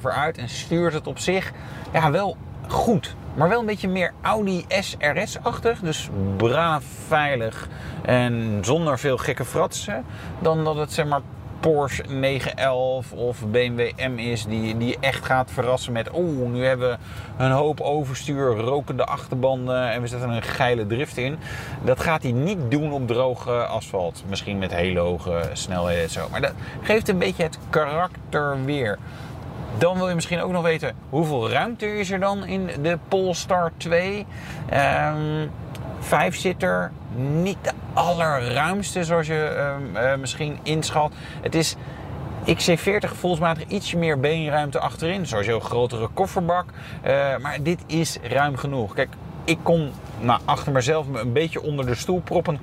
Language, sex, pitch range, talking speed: Dutch, male, 120-165 Hz, 160 wpm